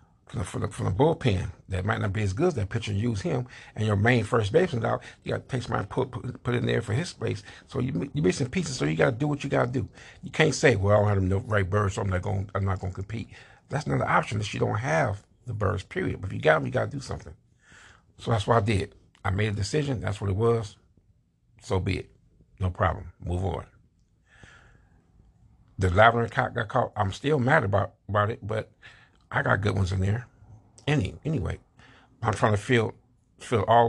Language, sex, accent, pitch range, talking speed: English, male, American, 95-120 Hz, 235 wpm